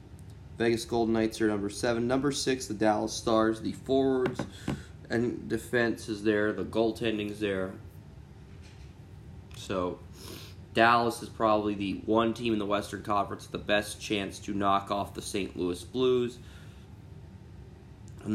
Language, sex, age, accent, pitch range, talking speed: English, male, 20-39, American, 95-115 Hz, 145 wpm